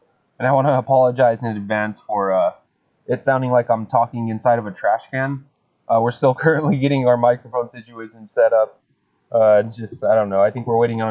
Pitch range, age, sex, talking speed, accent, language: 110-130 Hz, 20-39, male, 210 wpm, American, English